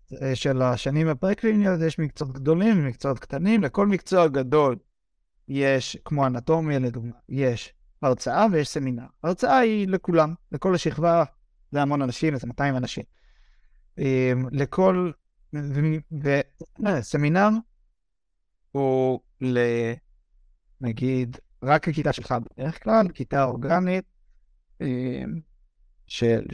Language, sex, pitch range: Hebrew, male, 130-170 Hz